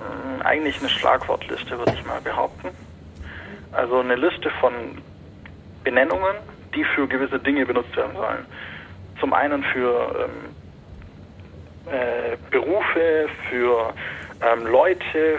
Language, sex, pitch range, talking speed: German, male, 115-150 Hz, 105 wpm